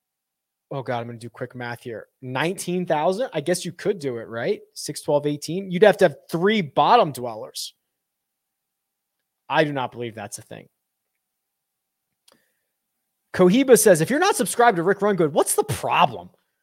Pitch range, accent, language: 130-195 Hz, American, English